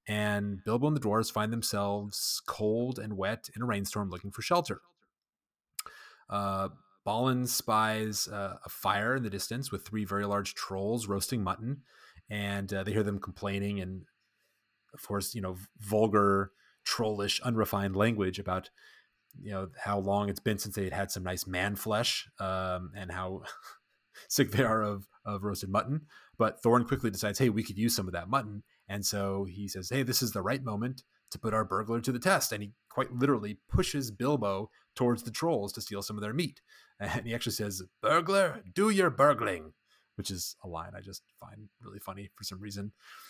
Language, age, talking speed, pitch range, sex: English, 30-49, 190 wpm, 100-115 Hz, male